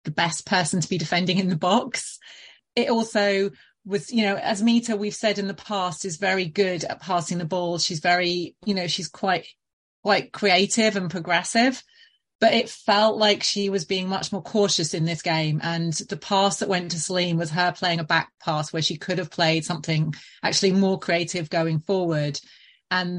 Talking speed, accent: 195 wpm, British